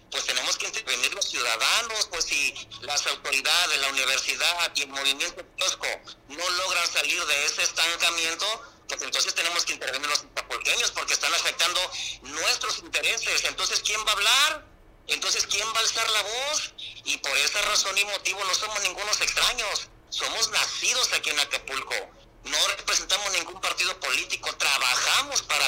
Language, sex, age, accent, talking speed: Spanish, male, 50-69, Mexican, 160 wpm